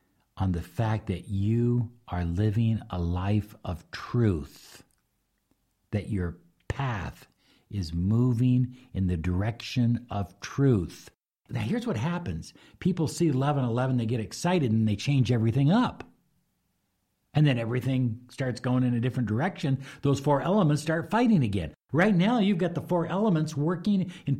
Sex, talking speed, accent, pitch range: male, 150 wpm, American, 100-155 Hz